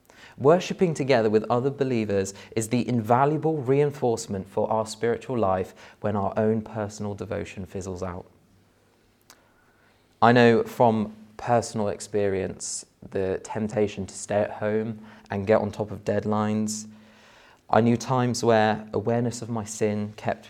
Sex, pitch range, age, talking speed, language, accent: male, 100-115 Hz, 30-49, 135 wpm, English, British